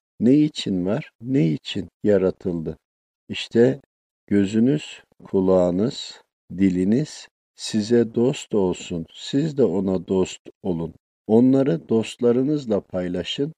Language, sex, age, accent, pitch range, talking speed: Turkish, male, 50-69, native, 95-130 Hz, 95 wpm